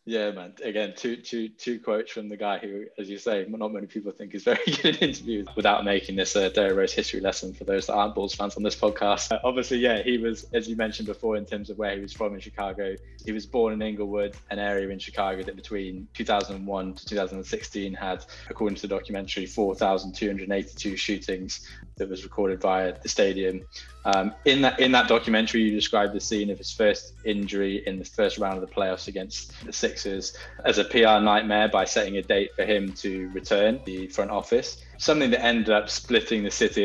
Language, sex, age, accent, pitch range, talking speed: English, male, 20-39, British, 100-110 Hz, 210 wpm